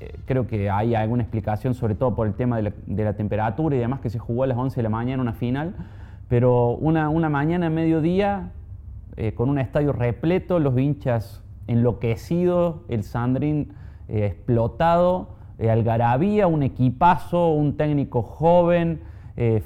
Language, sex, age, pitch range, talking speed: Spanish, male, 30-49, 110-155 Hz, 160 wpm